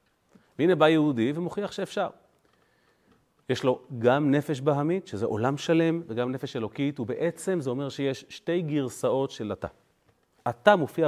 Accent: native